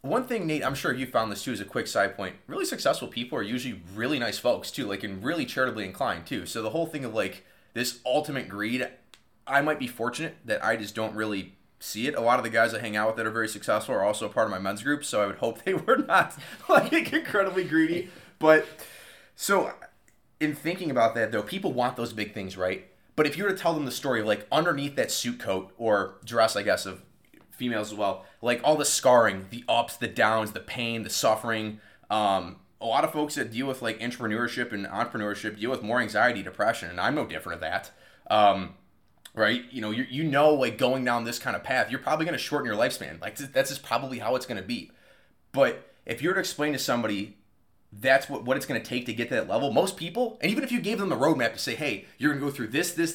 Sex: male